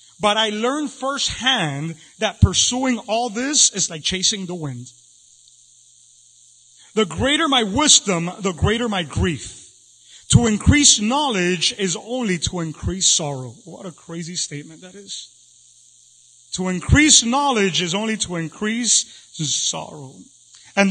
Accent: American